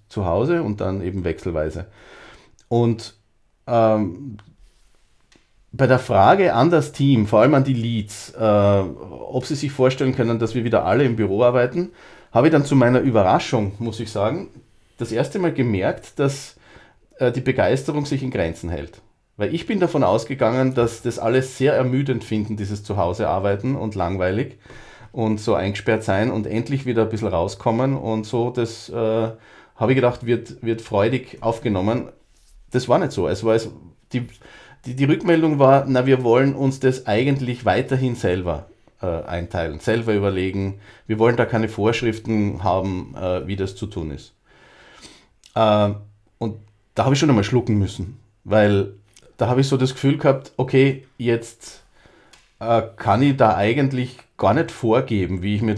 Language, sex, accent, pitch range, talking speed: German, male, Austrian, 105-130 Hz, 165 wpm